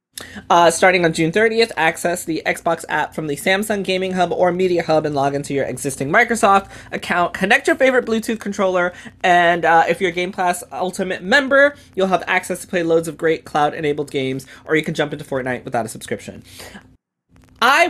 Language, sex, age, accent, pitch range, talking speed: English, male, 20-39, American, 160-205 Hz, 195 wpm